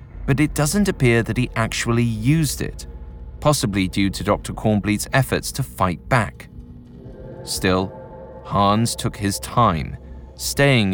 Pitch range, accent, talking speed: 75-115 Hz, British, 130 wpm